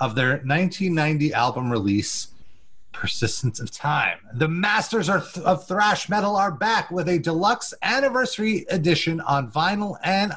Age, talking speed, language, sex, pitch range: 30-49, 135 wpm, English, male, 140-195 Hz